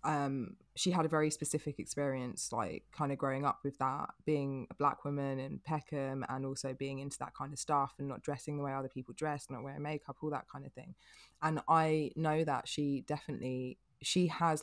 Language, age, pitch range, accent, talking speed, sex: English, 20-39, 135-155 Hz, British, 215 wpm, female